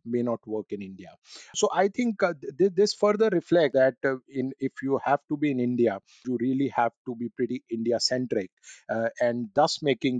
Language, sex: English, male